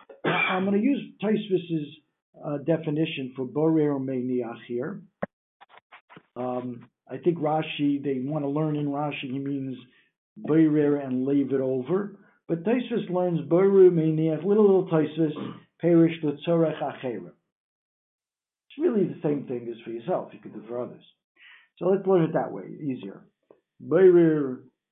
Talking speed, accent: 140 wpm, American